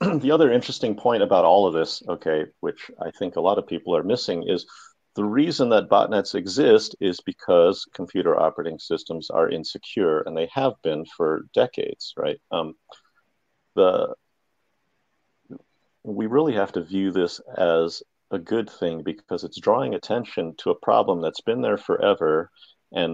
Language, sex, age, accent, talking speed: English, male, 50-69, American, 160 wpm